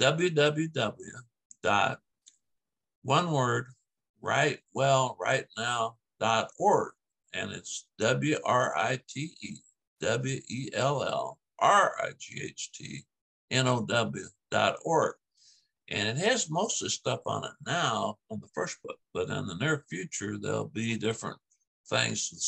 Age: 60-79